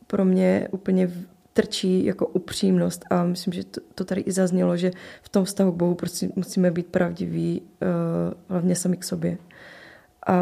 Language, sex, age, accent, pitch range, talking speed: Czech, female, 20-39, native, 175-190 Hz, 160 wpm